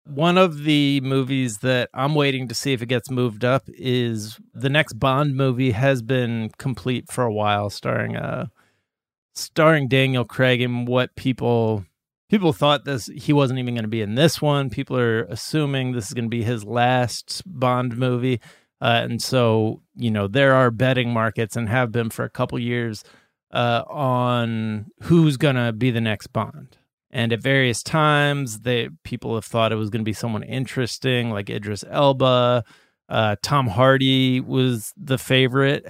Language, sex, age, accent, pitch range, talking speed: English, male, 30-49, American, 120-145 Hz, 175 wpm